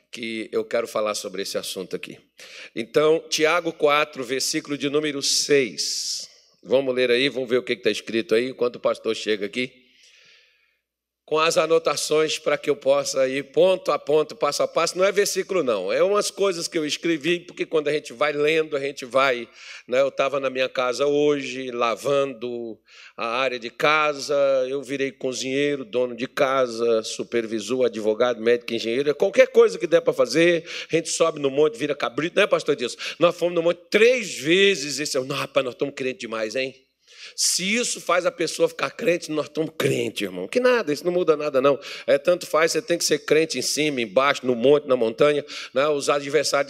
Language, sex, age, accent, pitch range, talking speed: Portuguese, male, 50-69, Brazilian, 130-160 Hz, 195 wpm